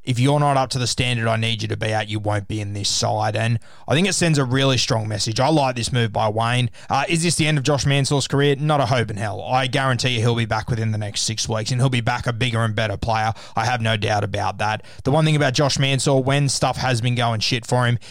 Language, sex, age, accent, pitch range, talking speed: English, male, 20-39, Australian, 110-125 Hz, 290 wpm